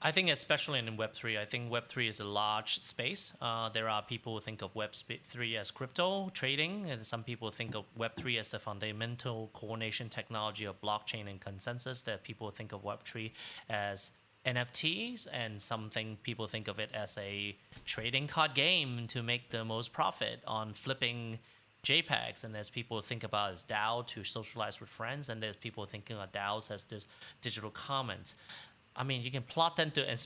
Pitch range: 110-130 Hz